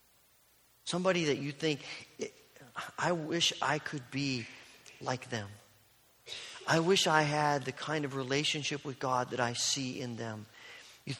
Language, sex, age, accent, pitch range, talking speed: English, male, 40-59, American, 125-170 Hz, 145 wpm